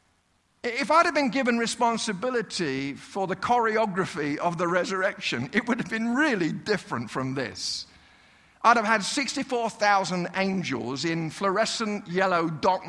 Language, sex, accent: English, male, British